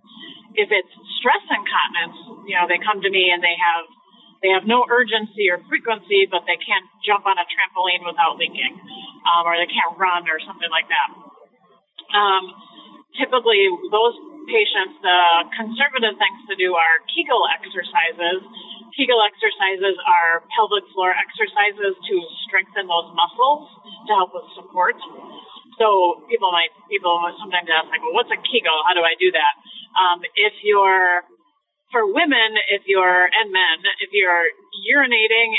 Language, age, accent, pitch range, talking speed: English, 30-49, American, 180-250 Hz, 155 wpm